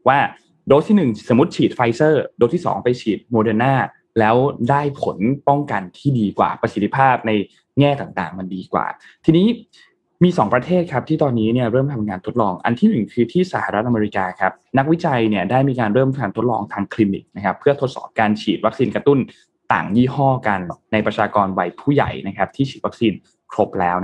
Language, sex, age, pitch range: Thai, male, 20-39, 105-135 Hz